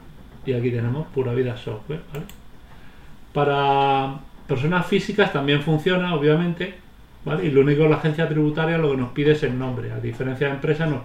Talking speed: 180 wpm